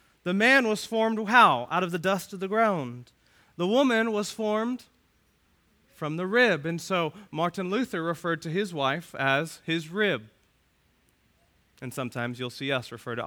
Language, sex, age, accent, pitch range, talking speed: English, male, 30-49, American, 120-195 Hz, 165 wpm